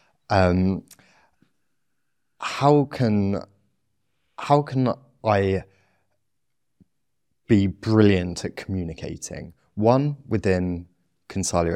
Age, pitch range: 20-39, 100-125 Hz